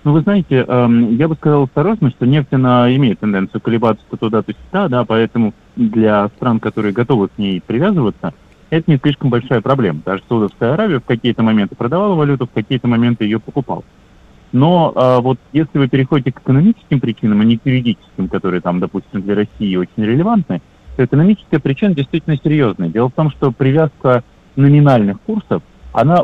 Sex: male